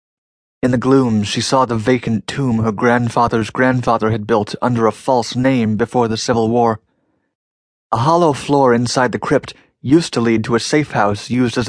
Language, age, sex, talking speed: English, 30-49, male, 185 wpm